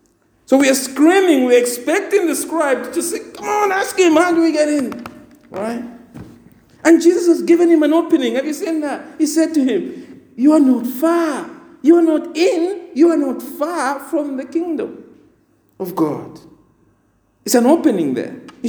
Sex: male